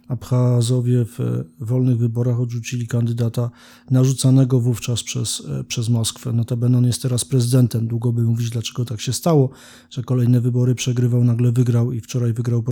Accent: native